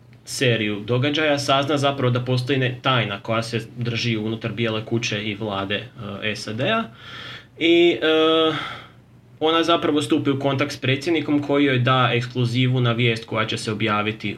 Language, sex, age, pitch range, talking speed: Croatian, male, 20-39, 110-135 Hz, 145 wpm